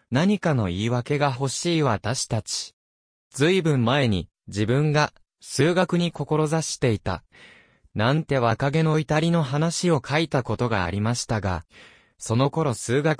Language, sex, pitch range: Japanese, male, 110-155 Hz